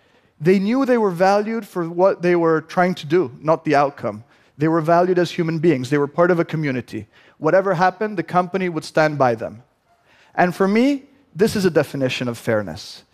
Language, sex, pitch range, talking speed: Portuguese, male, 140-190 Hz, 200 wpm